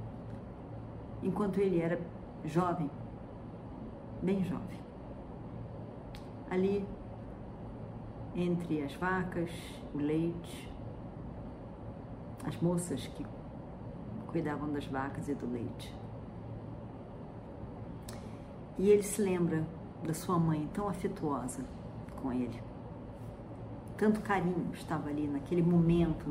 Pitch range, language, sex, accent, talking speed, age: 135-185 Hz, Portuguese, female, Brazilian, 85 wpm, 50-69